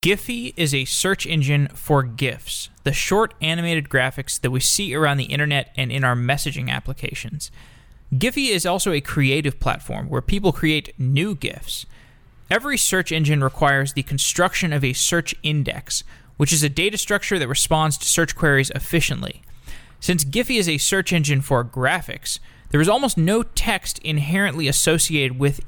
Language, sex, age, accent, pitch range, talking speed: English, male, 20-39, American, 135-175 Hz, 165 wpm